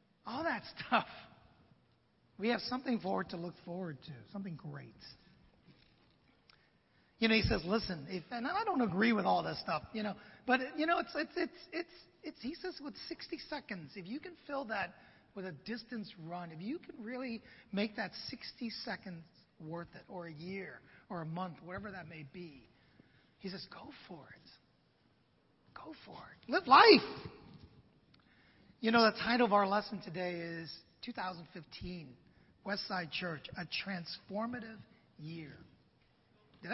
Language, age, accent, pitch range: English, 40-59, American, 175-245 Hz